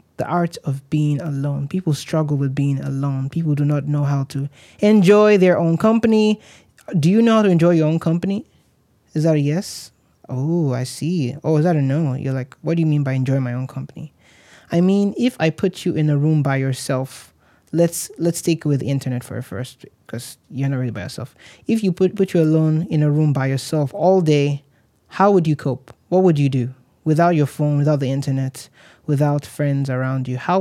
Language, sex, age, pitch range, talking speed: English, male, 20-39, 140-170 Hz, 215 wpm